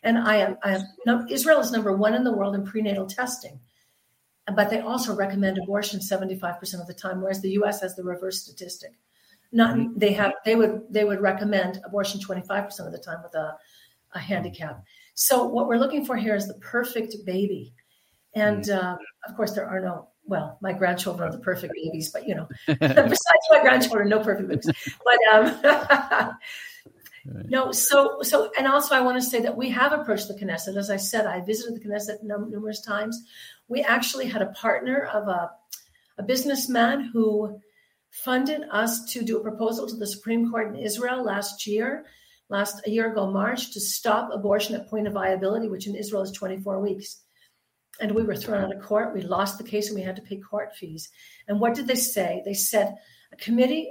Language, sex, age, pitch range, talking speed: English, female, 50-69, 195-235 Hz, 195 wpm